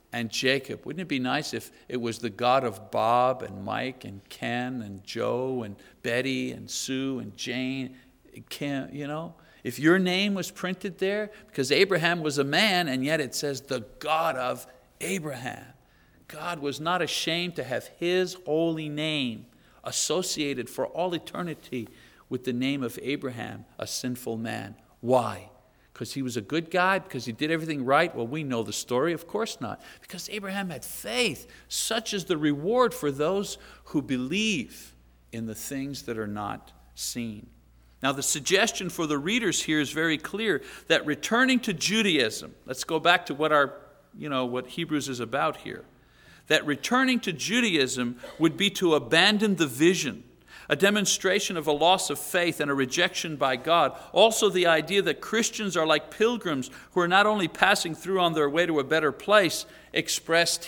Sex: male